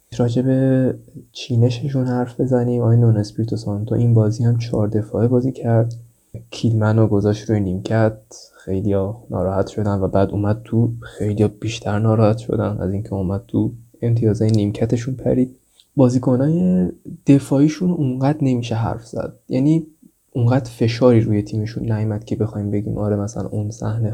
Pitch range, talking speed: 110-130 Hz, 155 wpm